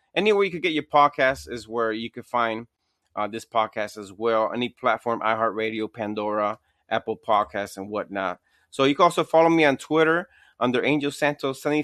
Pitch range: 115-150 Hz